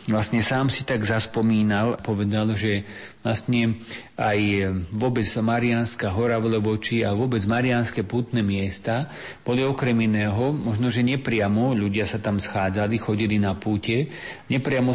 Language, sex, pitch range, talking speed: Slovak, male, 105-120 Hz, 135 wpm